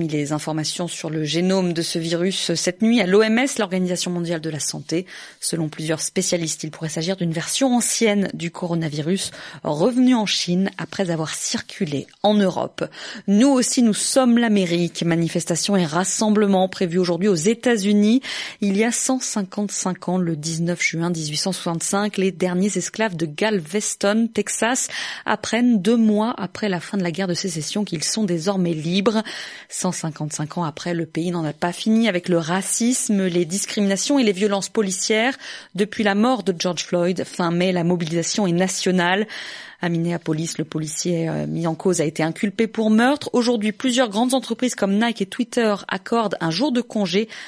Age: 20-39